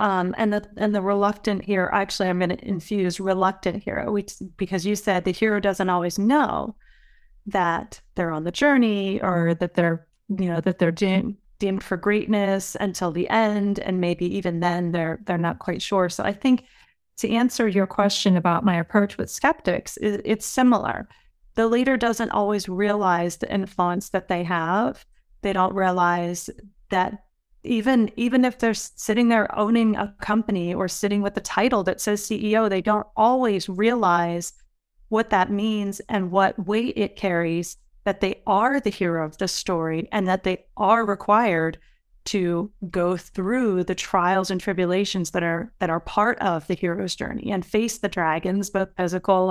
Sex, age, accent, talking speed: female, 30-49, American, 175 wpm